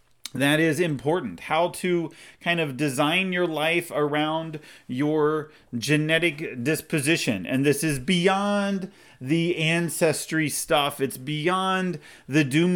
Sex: male